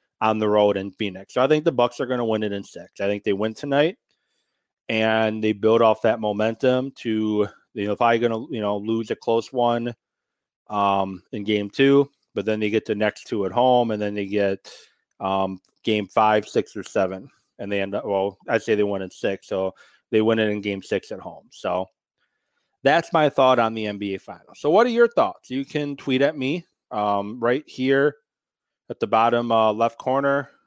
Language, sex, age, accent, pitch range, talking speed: English, male, 30-49, American, 105-135 Hz, 215 wpm